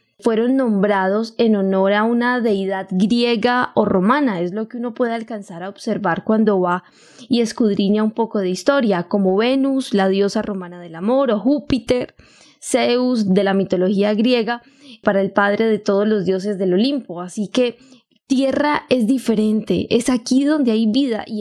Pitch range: 205-255 Hz